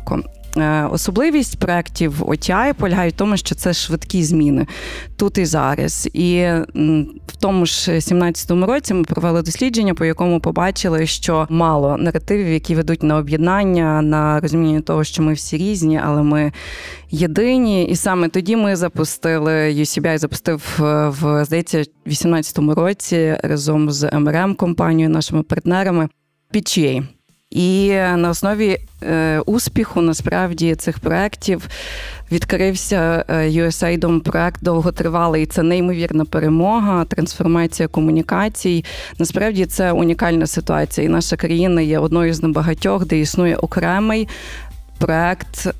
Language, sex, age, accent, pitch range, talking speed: Ukrainian, female, 20-39, native, 160-185 Hz, 120 wpm